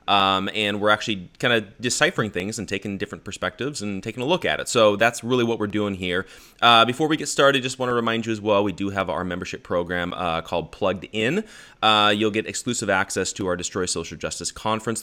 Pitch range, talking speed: 90-115 Hz, 235 wpm